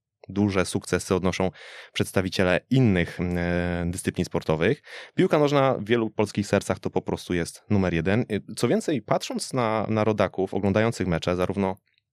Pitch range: 95-115 Hz